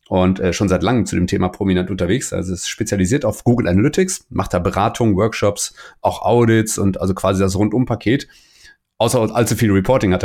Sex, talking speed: male, 180 wpm